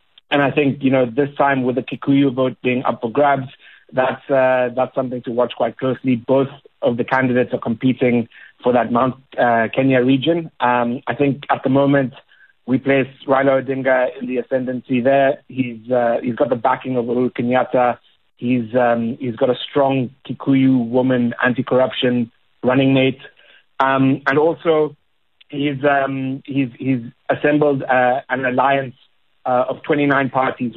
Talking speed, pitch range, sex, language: 165 wpm, 125-140 Hz, male, English